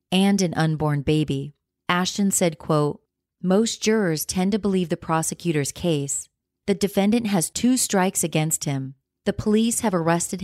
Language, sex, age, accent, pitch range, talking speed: English, female, 30-49, American, 155-190 Hz, 150 wpm